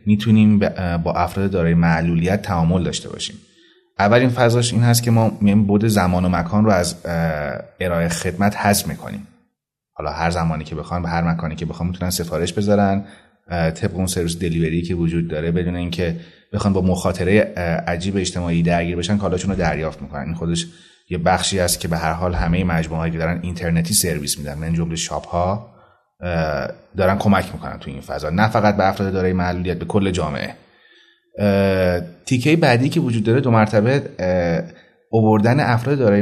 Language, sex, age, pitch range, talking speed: Persian, male, 30-49, 85-105 Hz, 170 wpm